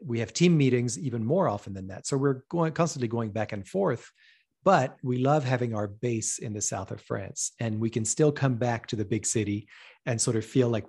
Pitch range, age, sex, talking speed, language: 110-140 Hz, 40-59, male, 235 wpm, English